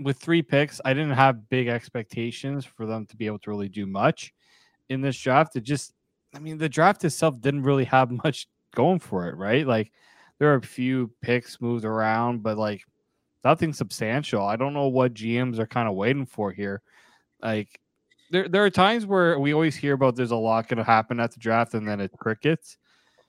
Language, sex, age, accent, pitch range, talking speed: English, male, 20-39, American, 115-145 Hz, 210 wpm